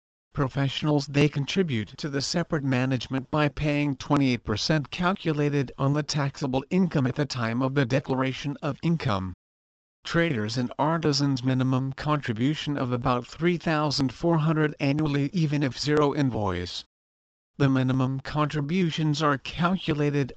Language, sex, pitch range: English, male, 125-150 Hz